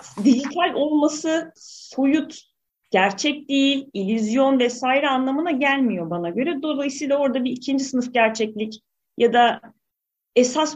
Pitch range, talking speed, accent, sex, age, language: 210-275 Hz, 110 wpm, native, female, 40-59, Turkish